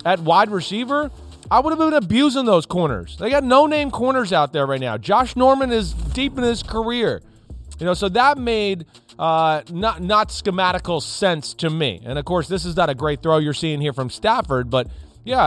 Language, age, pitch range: English, 30-49, 140-215 Hz